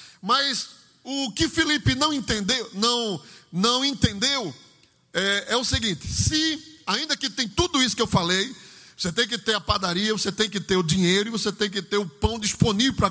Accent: Brazilian